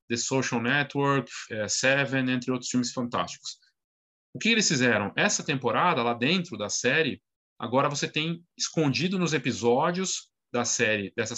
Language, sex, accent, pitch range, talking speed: Portuguese, male, Brazilian, 125-170 Hz, 150 wpm